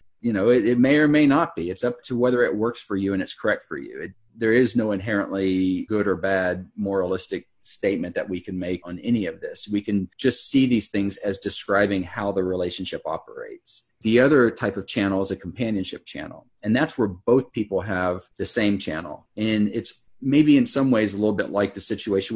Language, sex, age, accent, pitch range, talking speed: English, male, 40-59, American, 95-120 Hz, 220 wpm